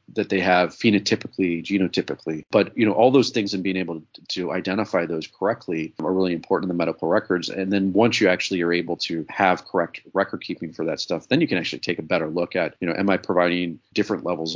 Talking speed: 235 wpm